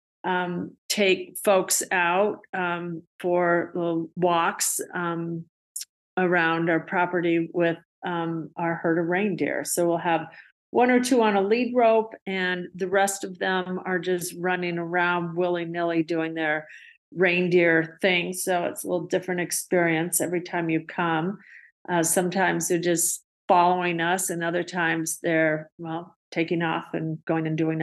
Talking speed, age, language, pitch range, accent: 150 wpm, 50-69, English, 170-185 Hz, American